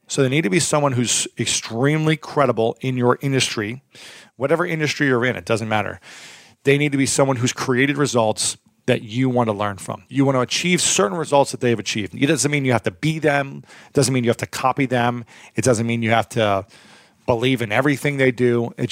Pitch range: 115-135 Hz